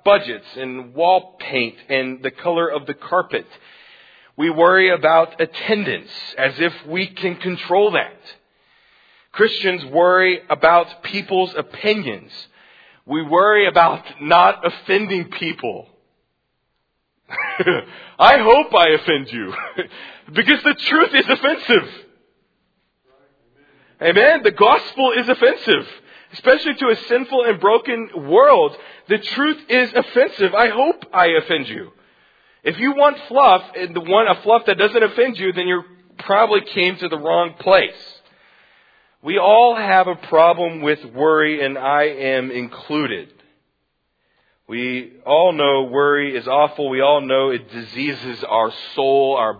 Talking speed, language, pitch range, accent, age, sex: 130 wpm, English, 145-220 Hz, American, 40-59, male